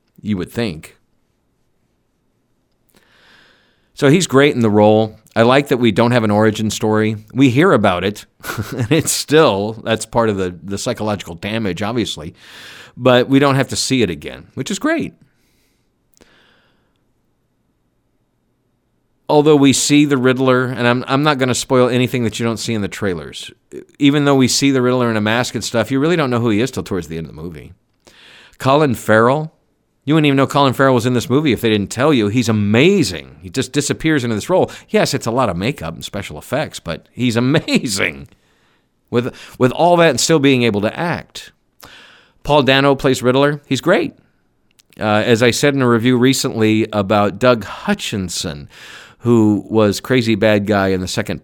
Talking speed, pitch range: 190 wpm, 105-135 Hz